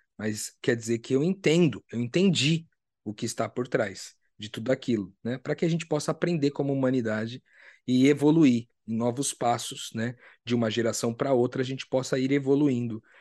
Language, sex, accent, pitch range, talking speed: Portuguese, male, Brazilian, 120-175 Hz, 185 wpm